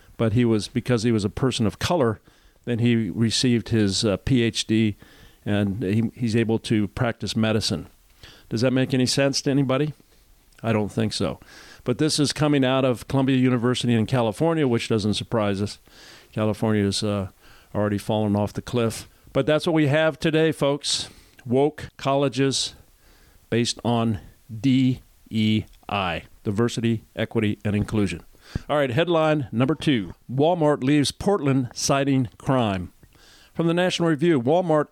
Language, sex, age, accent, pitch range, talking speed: English, male, 50-69, American, 110-140 Hz, 150 wpm